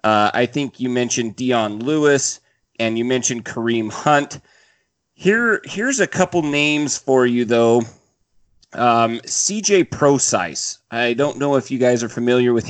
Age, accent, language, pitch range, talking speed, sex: 30-49, American, English, 110-145 Hz, 150 wpm, male